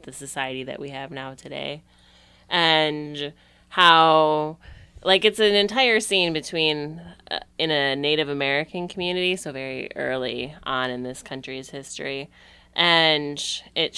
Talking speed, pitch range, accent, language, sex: 135 wpm, 140-180 Hz, American, English, female